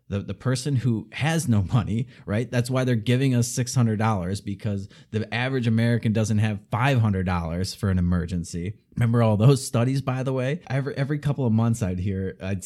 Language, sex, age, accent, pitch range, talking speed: English, male, 30-49, American, 105-135 Hz, 185 wpm